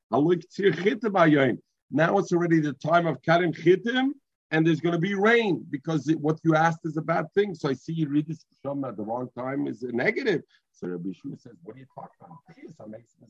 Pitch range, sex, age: 120-165 Hz, male, 50-69